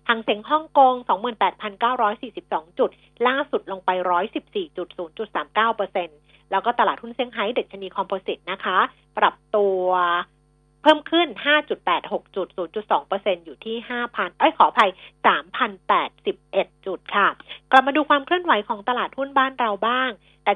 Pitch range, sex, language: 190-255 Hz, female, Thai